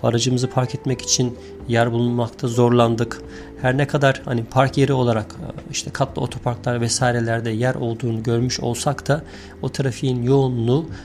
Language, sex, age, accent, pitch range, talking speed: Turkish, male, 40-59, native, 115-140 Hz, 140 wpm